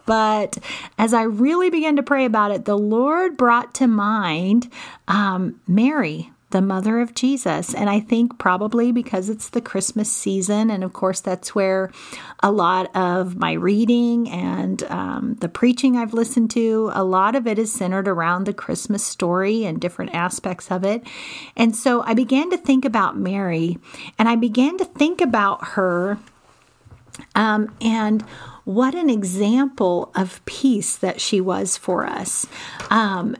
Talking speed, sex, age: 160 wpm, female, 40-59